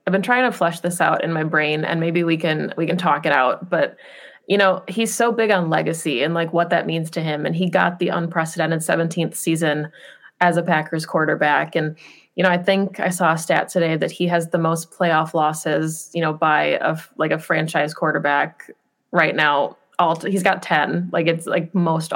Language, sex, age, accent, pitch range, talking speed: English, female, 20-39, American, 165-180 Hz, 215 wpm